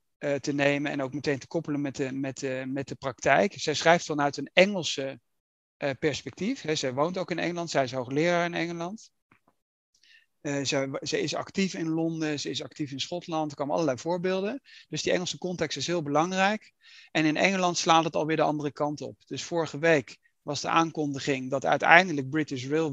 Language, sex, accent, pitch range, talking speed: Dutch, male, Dutch, 140-170 Hz, 180 wpm